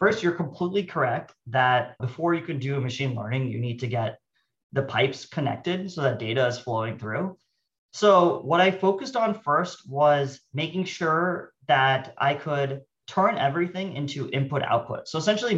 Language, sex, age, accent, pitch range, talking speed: English, male, 30-49, American, 135-180 Hz, 170 wpm